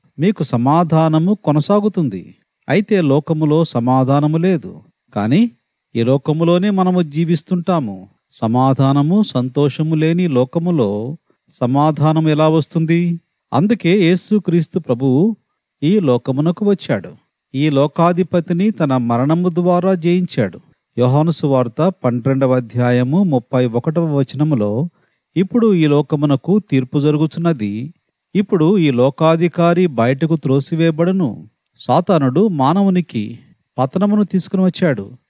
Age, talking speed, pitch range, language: 40-59, 85 wpm, 135-180 Hz, Telugu